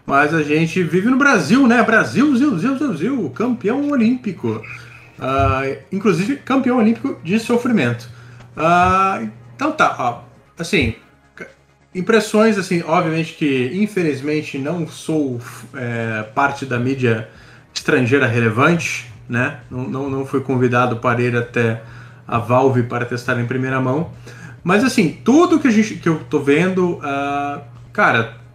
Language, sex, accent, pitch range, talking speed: Portuguese, male, Brazilian, 125-180 Hz, 135 wpm